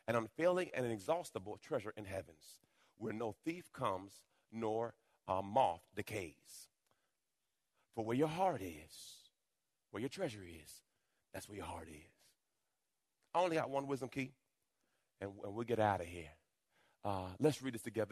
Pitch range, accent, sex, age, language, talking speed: 110-170 Hz, American, male, 40-59, English, 150 wpm